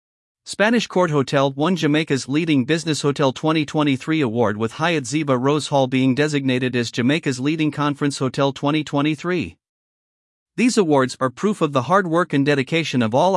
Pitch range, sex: 130-160 Hz, male